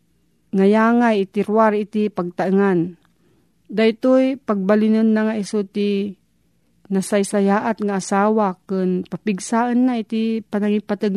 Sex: female